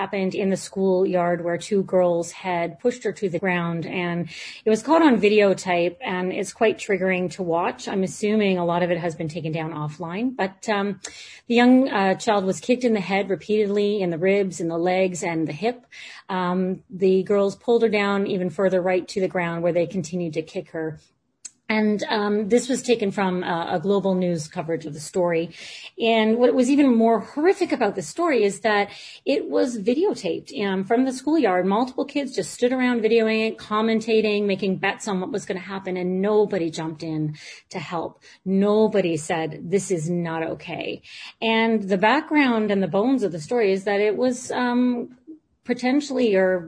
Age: 30-49